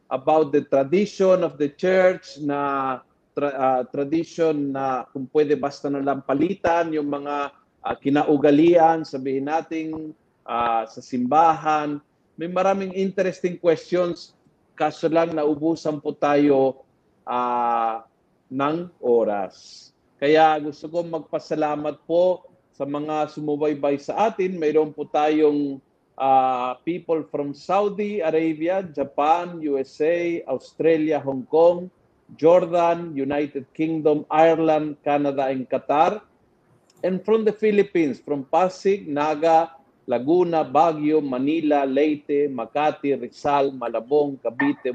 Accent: native